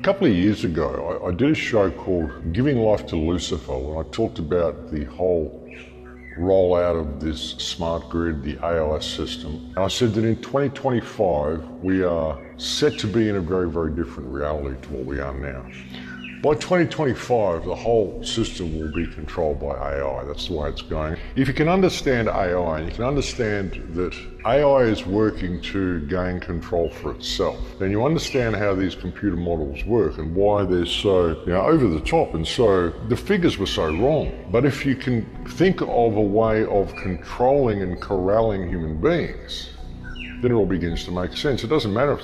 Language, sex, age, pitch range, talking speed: English, female, 50-69, 80-110 Hz, 190 wpm